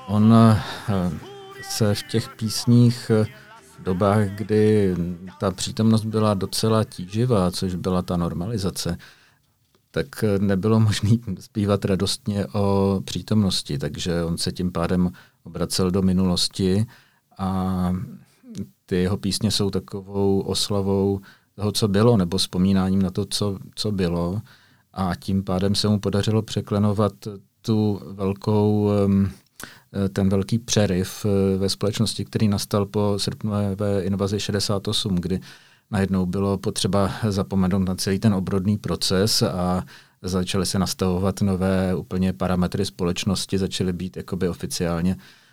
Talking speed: 120 wpm